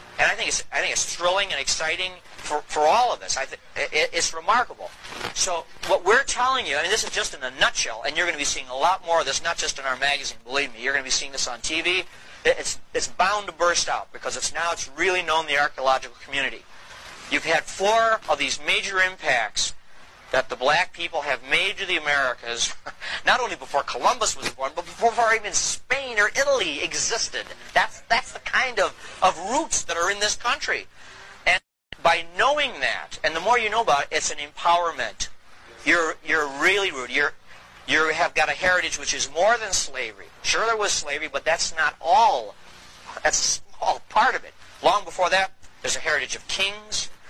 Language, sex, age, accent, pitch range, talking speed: English, male, 40-59, American, 145-210 Hz, 210 wpm